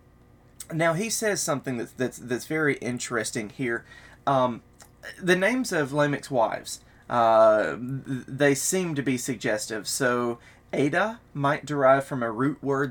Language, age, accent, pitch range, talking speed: English, 30-49, American, 120-150 Hz, 135 wpm